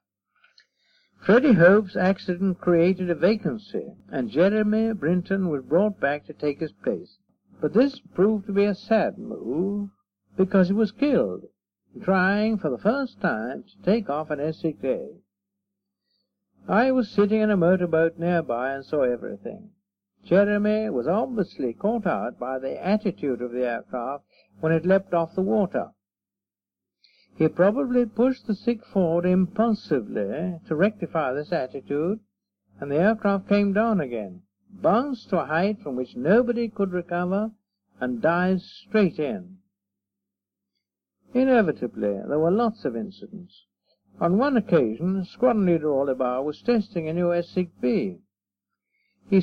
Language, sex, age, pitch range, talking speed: English, male, 60-79, 145-210 Hz, 135 wpm